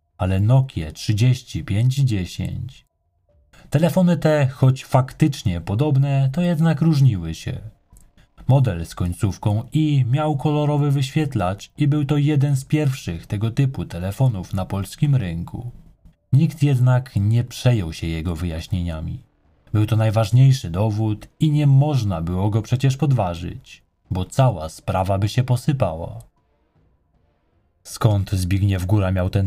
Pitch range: 90-135 Hz